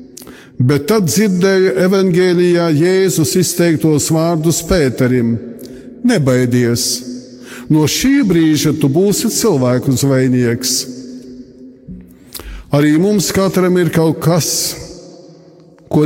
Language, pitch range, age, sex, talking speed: English, 130-180 Hz, 50-69, male, 85 wpm